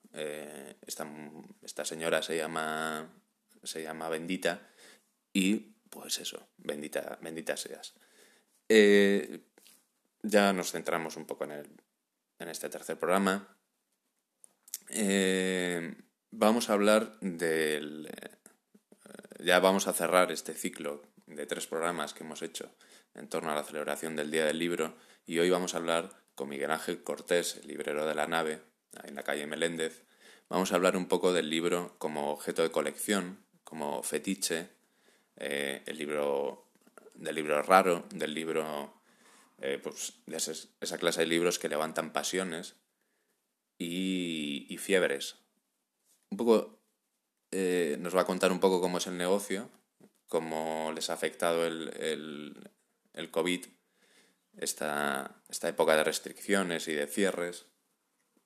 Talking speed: 140 wpm